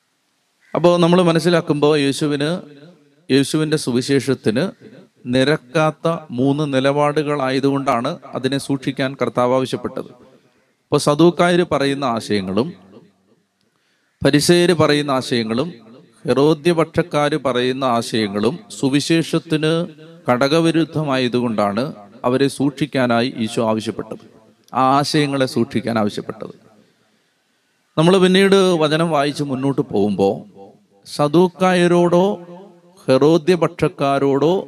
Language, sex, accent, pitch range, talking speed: Malayalam, male, native, 130-165 Hz, 65 wpm